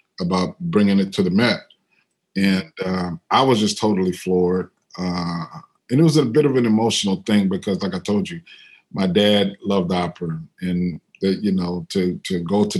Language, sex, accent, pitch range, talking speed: English, male, American, 90-110 Hz, 190 wpm